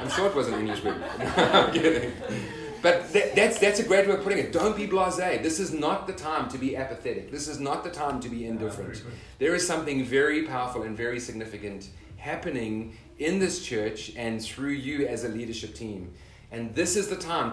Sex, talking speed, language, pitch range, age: male, 210 wpm, French, 105-145 Hz, 30-49